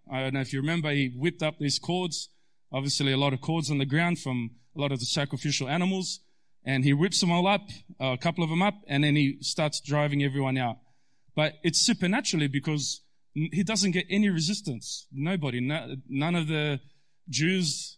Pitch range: 135-165 Hz